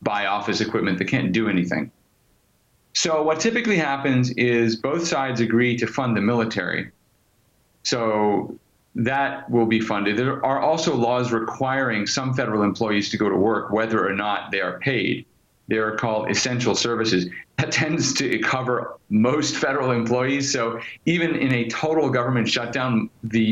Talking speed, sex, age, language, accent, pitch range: 160 wpm, male, 40-59, English, American, 110-135 Hz